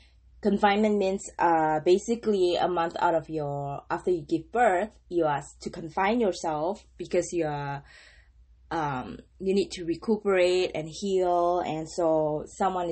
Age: 20-39